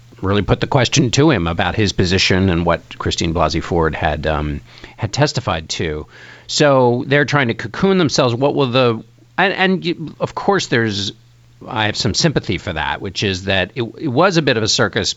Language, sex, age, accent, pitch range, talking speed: English, male, 50-69, American, 90-125 Hz, 200 wpm